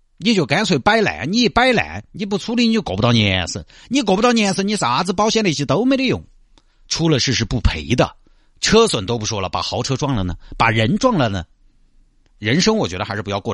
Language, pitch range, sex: Chinese, 90-135 Hz, male